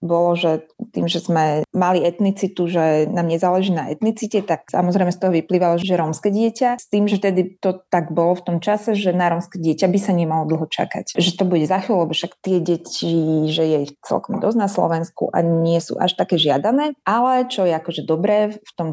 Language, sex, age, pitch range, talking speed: Slovak, female, 20-39, 165-200 Hz, 215 wpm